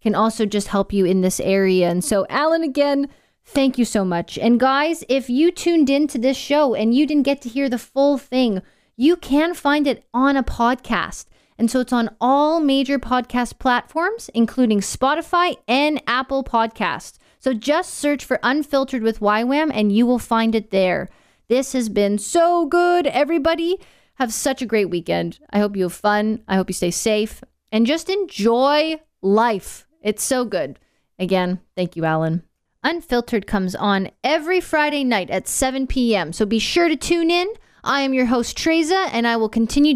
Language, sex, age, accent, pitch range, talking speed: English, female, 20-39, American, 210-285 Hz, 185 wpm